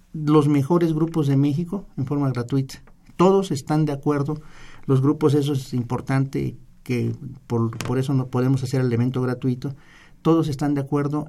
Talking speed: 165 wpm